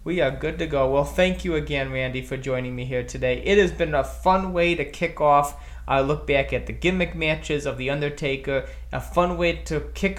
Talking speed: 230 wpm